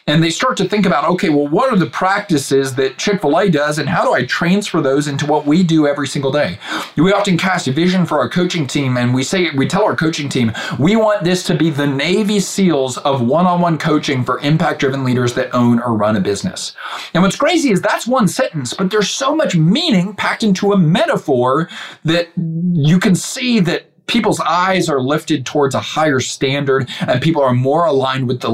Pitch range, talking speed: 120-175 Hz, 225 wpm